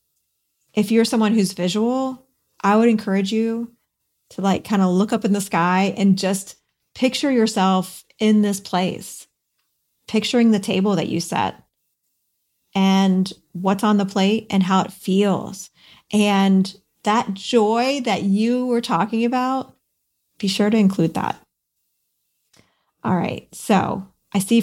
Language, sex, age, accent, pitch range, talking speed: English, female, 30-49, American, 190-230 Hz, 140 wpm